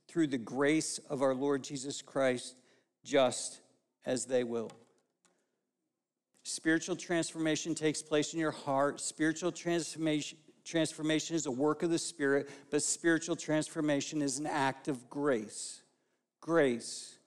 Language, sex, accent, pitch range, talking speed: English, male, American, 150-195 Hz, 130 wpm